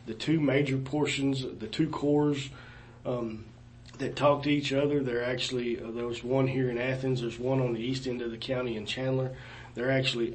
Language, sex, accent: English, male, American